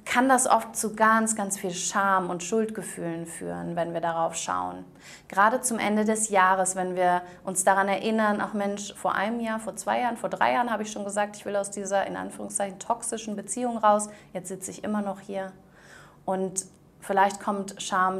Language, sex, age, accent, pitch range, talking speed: German, female, 30-49, German, 180-215 Hz, 195 wpm